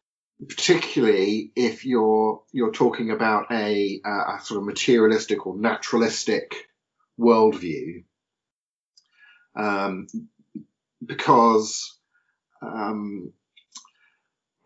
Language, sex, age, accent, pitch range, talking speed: English, male, 40-59, British, 110-140 Hz, 75 wpm